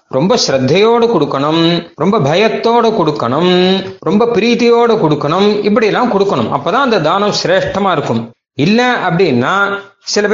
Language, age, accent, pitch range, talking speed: Tamil, 30-49, native, 155-210 Hz, 120 wpm